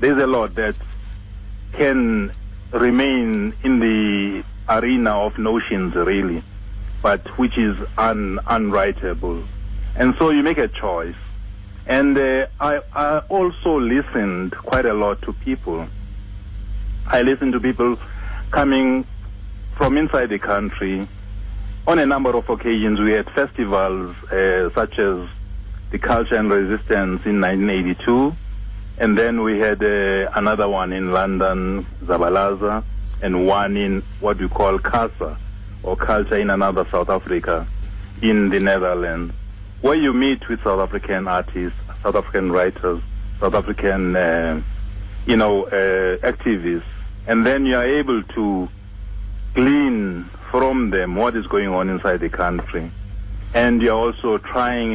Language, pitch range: English, 95-115 Hz